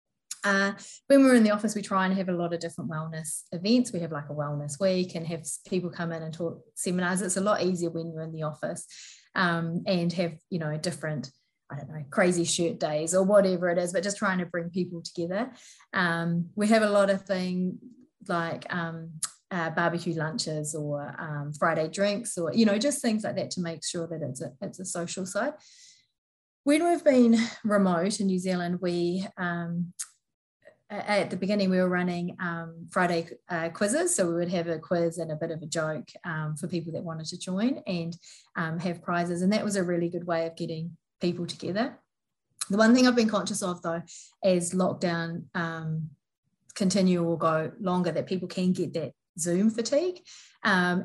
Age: 30-49